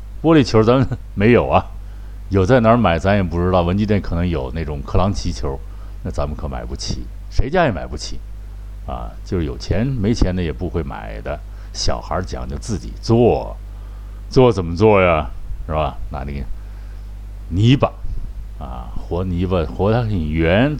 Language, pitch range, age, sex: Chinese, 85-105 Hz, 60-79, male